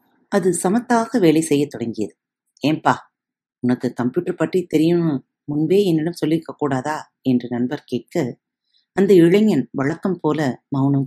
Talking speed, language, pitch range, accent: 125 wpm, Tamil, 135-185 Hz, native